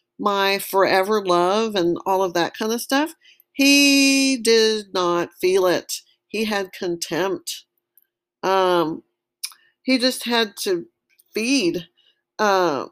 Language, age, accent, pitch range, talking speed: English, 50-69, American, 180-245 Hz, 110 wpm